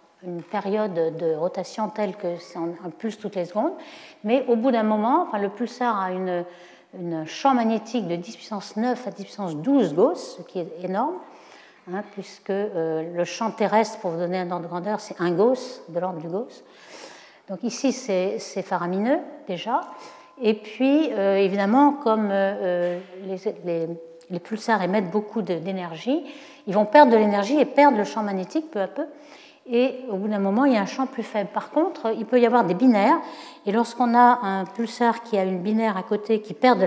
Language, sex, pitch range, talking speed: French, female, 190-245 Hz, 200 wpm